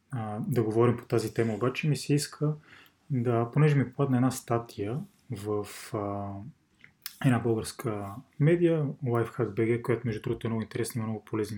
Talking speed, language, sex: 160 wpm, Bulgarian, male